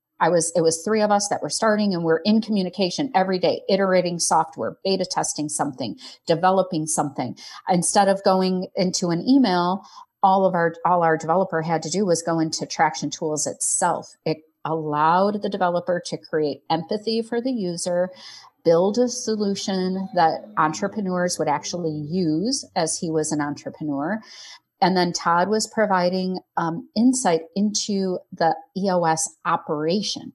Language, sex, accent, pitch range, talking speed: English, female, American, 160-200 Hz, 155 wpm